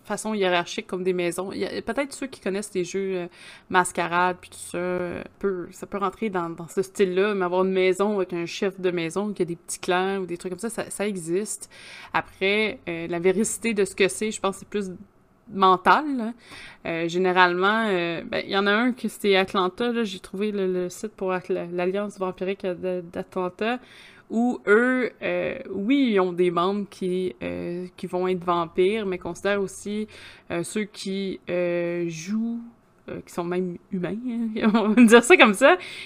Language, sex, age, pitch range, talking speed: French, female, 20-39, 180-210 Hz, 200 wpm